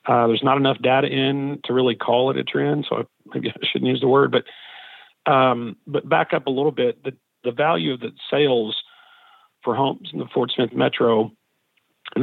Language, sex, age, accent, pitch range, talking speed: English, male, 40-59, American, 115-140 Hz, 205 wpm